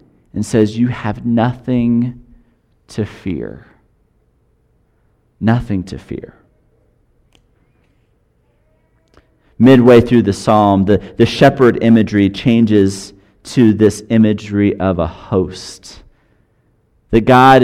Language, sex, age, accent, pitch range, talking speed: English, male, 40-59, American, 110-145 Hz, 90 wpm